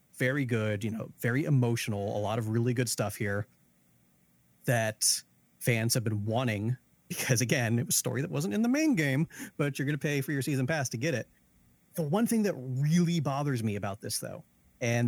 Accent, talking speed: American, 210 wpm